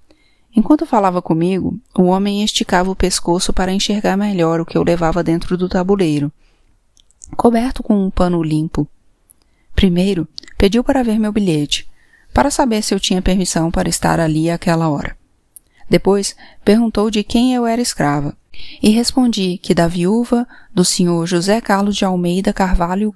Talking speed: 155 wpm